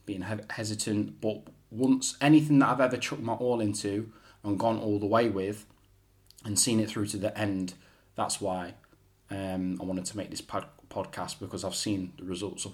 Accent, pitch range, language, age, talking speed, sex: British, 95-110 Hz, English, 10-29, 190 wpm, male